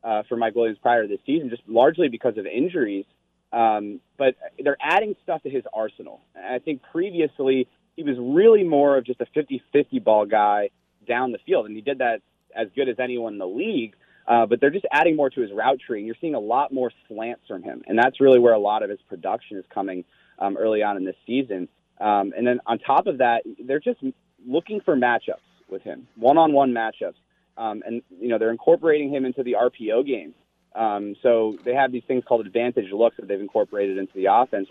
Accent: American